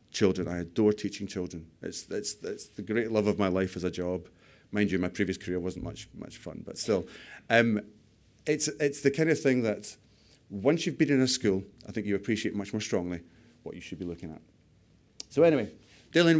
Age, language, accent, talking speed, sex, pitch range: 40-59, English, British, 210 wpm, male, 95-115 Hz